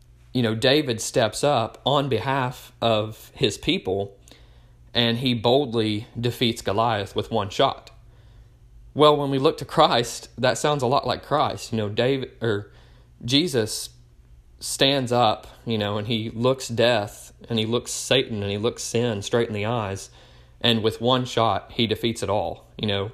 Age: 30-49